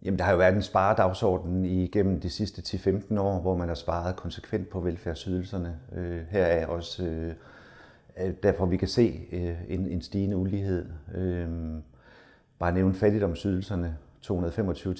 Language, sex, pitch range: Danish, male, 85-100 Hz